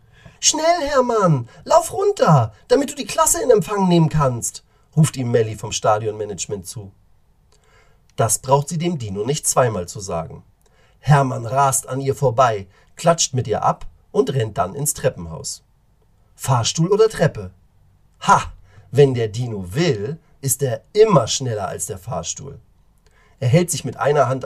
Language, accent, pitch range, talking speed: German, German, 125-180 Hz, 150 wpm